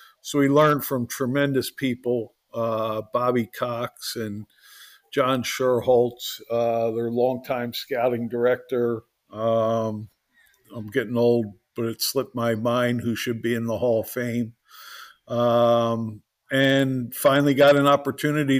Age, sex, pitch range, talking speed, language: 50-69, male, 120-140 Hz, 130 wpm, English